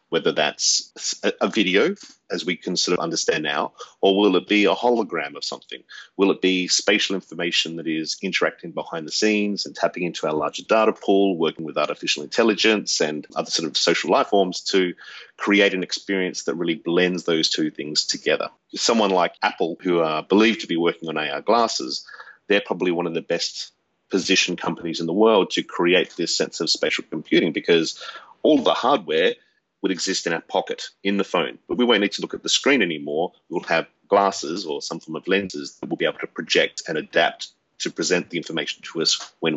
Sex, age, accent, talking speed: male, 40-59, Australian, 205 wpm